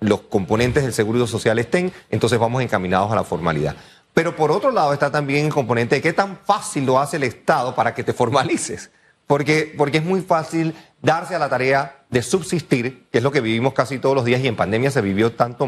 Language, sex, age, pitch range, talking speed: Spanish, male, 30-49, 125-170 Hz, 220 wpm